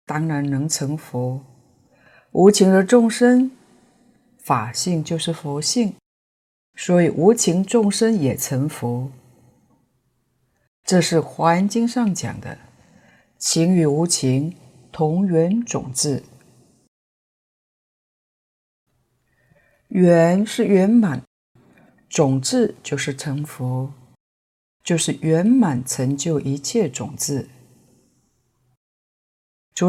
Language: Chinese